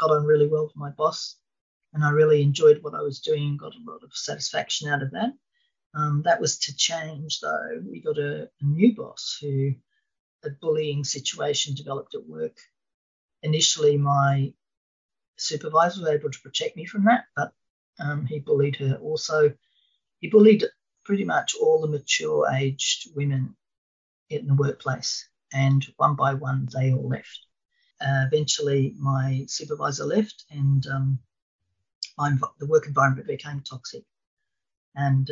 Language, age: English, 40-59